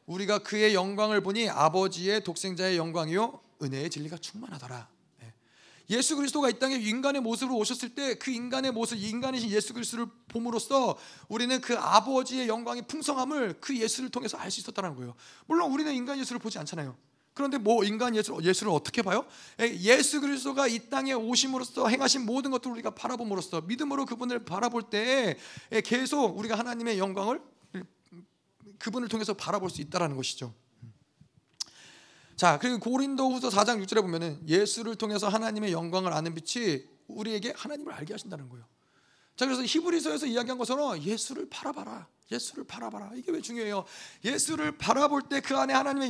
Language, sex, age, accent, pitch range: Korean, male, 30-49, native, 195-255 Hz